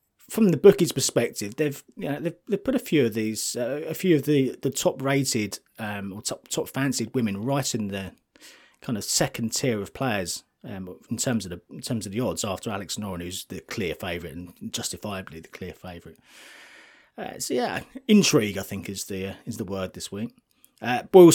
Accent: British